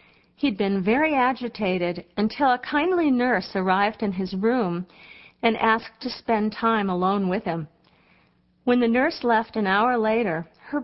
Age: 50-69